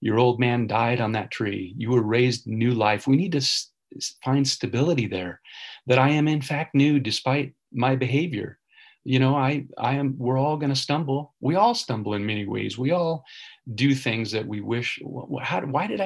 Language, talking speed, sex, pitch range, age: English, 200 wpm, male, 120-145 Hz, 40-59